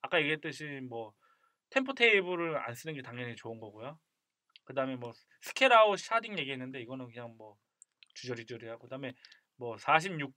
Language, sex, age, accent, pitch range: Korean, male, 20-39, native, 130-185 Hz